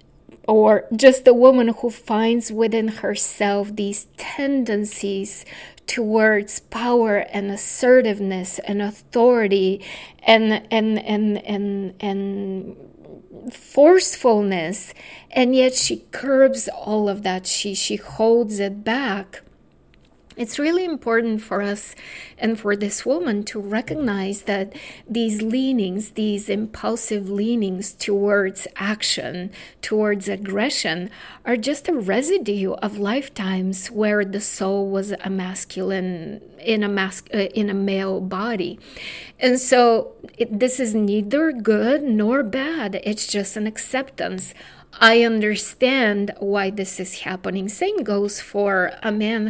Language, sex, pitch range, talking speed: English, female, 200-235 Hz, 120 wpm